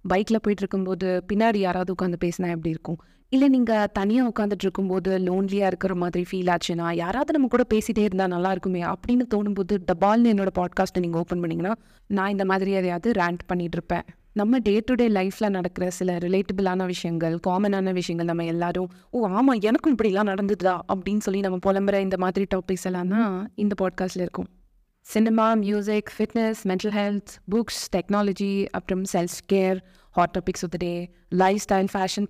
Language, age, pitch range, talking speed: Tamil, 20-39, 185-220 Hz, 160 wpm